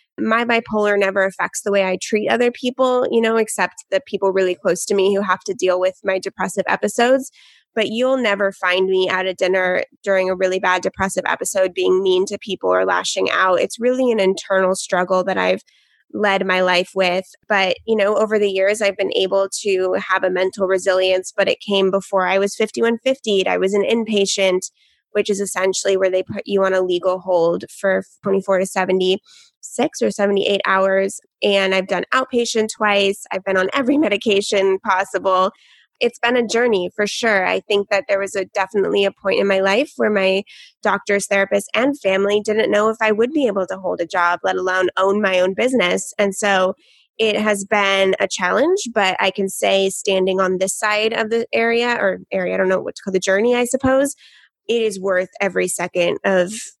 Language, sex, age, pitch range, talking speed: English, female, 20-39, 185-215 Hz, 200 wpm